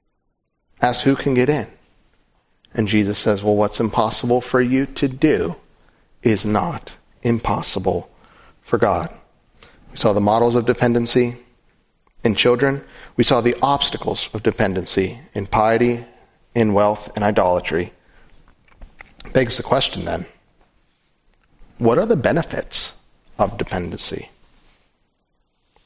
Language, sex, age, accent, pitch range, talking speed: English, male, 40-59, American, 110-160 Hz, 115 wpm